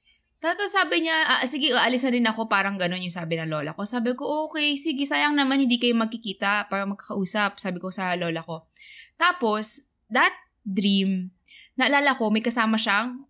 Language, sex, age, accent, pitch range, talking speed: Filipino, female, 20-39, native, 195-245 Hz, 175 wpm